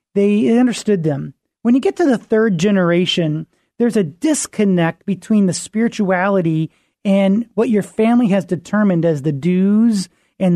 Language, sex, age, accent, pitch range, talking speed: English, male, 30-49, American, 180-225 Hz, 150 wpm